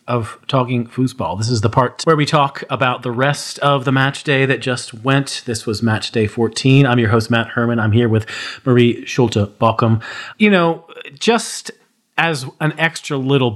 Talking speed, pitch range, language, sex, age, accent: 185 wpm, 115-150 Hz, English, male, 30-49, American